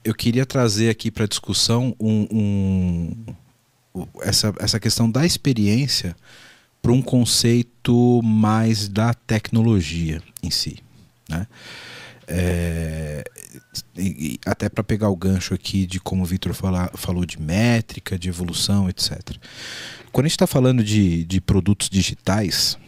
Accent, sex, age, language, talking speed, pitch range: Brazilian, male, 40-59, Portuguese, 135 wpm, 95-125 Hz